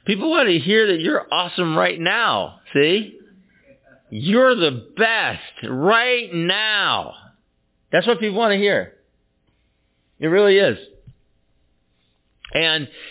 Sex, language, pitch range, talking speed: male, English, 155-210 Hz, 115 wpm